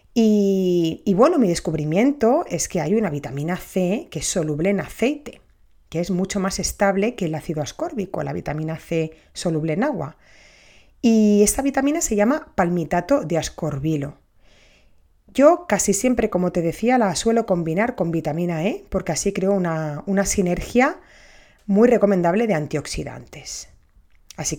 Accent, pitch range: Spanish, 160-210 Hz